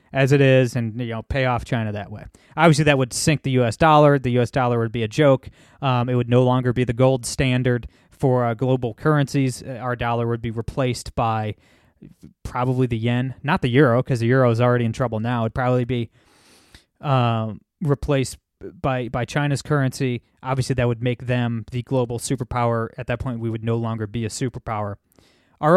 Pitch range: 120-140 Hz